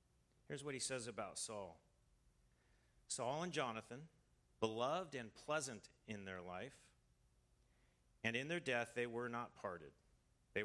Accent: American